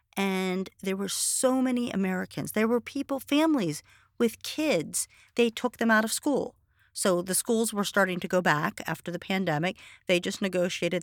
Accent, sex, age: American, female, 40-59